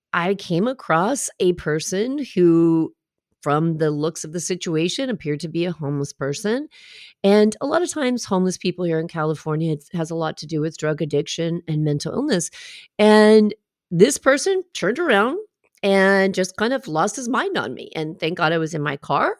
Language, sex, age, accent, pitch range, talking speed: English, female, 40-59, American, 160-260 Hz, 190 wpm